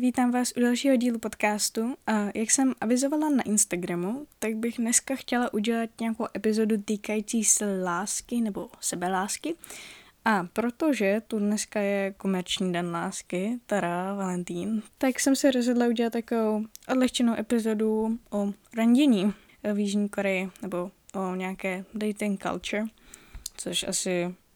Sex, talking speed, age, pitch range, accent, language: female, 130 wpm, 10-29, 190-220 Hz, native, Czech